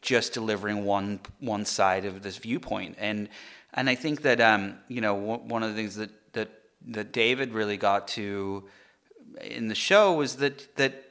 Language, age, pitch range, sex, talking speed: English, 30-49, 100-125 Hz, male, 180 wpm